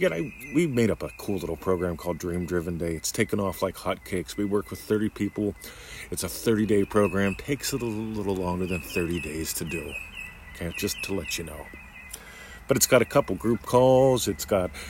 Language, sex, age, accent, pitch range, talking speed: English, male, 40-59, American, 85-110 Hz, 195 wpm